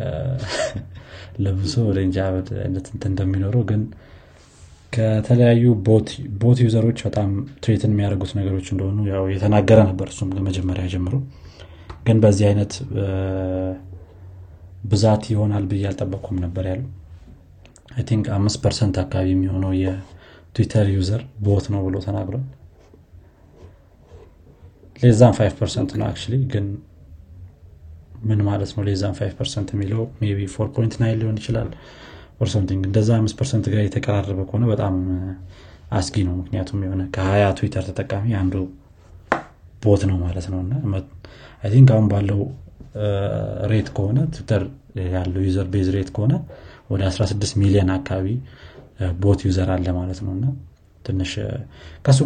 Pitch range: 95-110 Hz